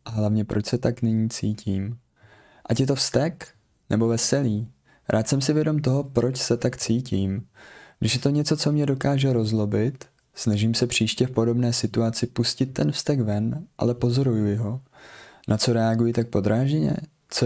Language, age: Czech, 20-39